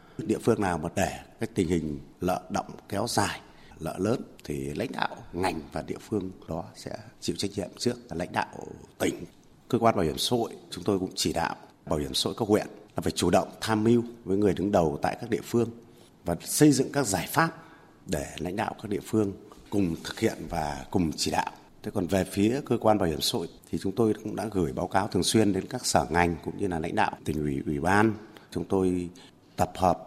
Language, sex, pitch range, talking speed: Vietnamese, male, 90-110 Hz, 230 wpm